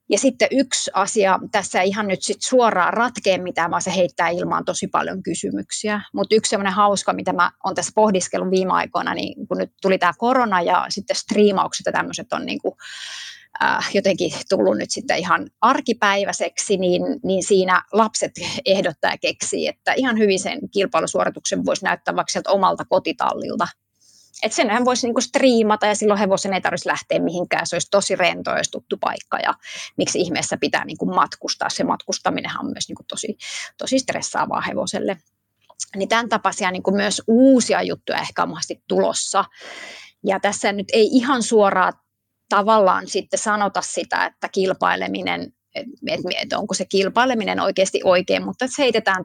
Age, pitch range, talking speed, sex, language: 30-49, 185-225 Hz, 155 wpm, female, Finnish